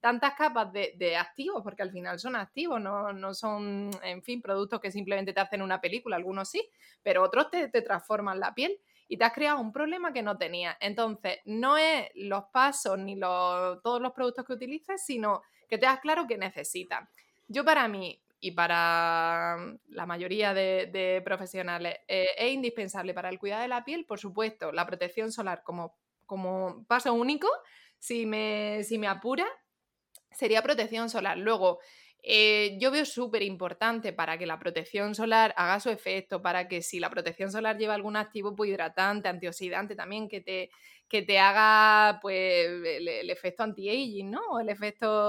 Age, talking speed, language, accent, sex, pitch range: 20-39, 175 wpm, Spanish, Spanish, female, 190-235 Hz